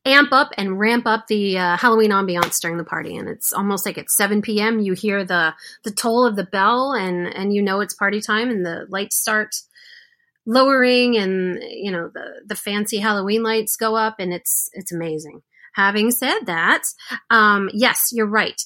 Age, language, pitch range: 30-49, English, 190-225 Hz